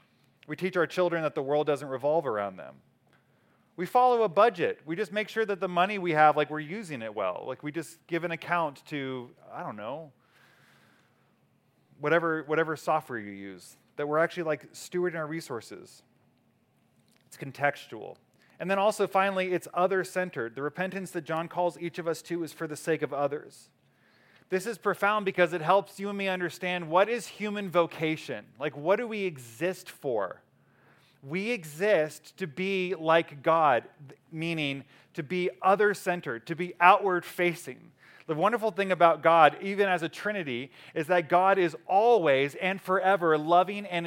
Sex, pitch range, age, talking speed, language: male, 155-190 Hz, 30-49, 175 wpm, English